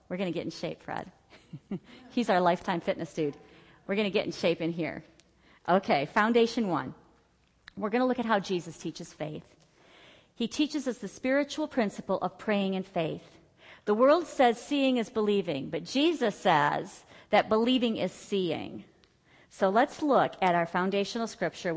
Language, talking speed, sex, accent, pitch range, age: English, 170 wpm, female, American, 170-255 Hz, 40-59